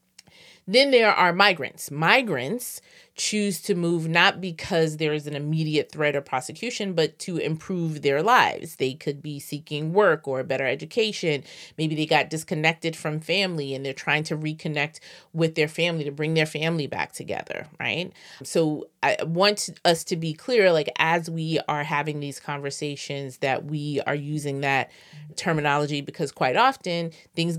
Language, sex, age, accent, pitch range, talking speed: English, female, 30-49, American, 145-170 Hz, 165 wpm